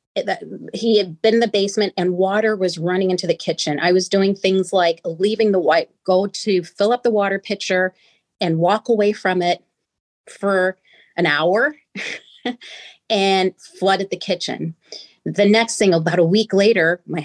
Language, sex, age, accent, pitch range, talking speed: English, female, 30-49, American, 170-215 Hz, 165 wpm